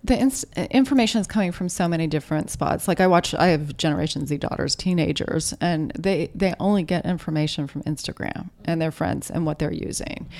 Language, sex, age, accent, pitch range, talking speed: English, female, 30-49, American, 155-185 Hz, 190 wpm